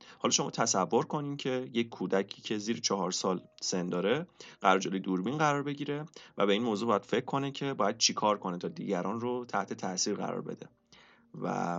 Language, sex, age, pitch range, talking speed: Persian, male, 30-49, 95-135 Hz, 185 wpm